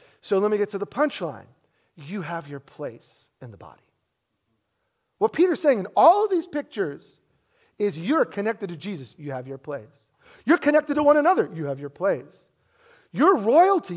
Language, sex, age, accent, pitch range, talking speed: English, male, 40-59, American, 145-230 Hz, 180 wpm